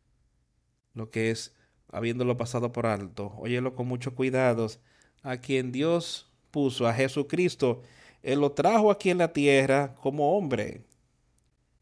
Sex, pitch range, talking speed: male, 120-160 Hz, 130 wpm